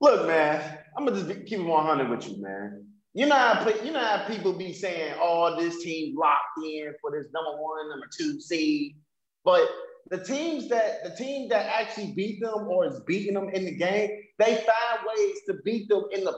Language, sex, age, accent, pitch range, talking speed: English, male, 30-49, American, 165-230 Hz, 215 wpm